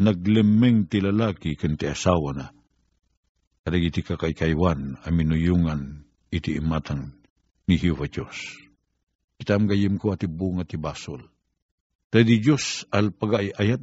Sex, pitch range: male, 90-115 Hz